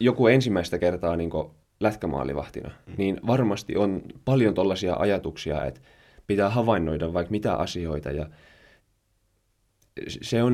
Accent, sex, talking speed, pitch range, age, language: native, male, 115 wpm, 85-110 Hz, 20-39, Finnish